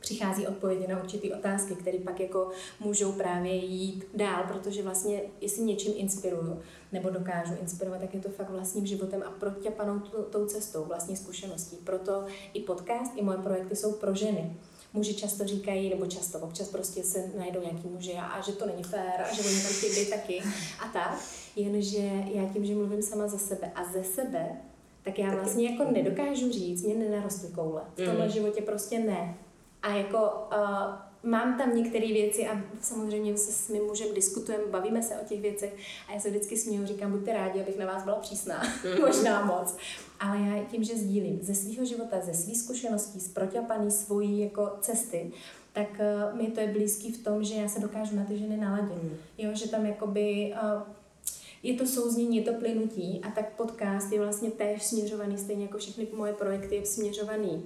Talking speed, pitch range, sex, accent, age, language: 190 wpm, 190-215 Hz, female, native, 30-49, Czech